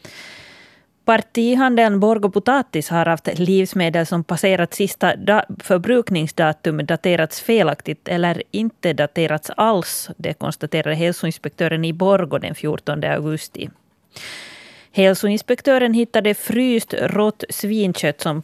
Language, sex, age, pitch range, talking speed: Swedish, female, 30-49, 155-195 Hz, 95 wpm